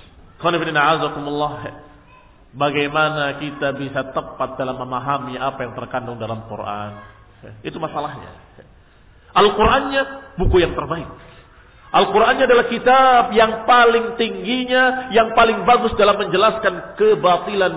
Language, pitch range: Indonesian, 130-195 Hz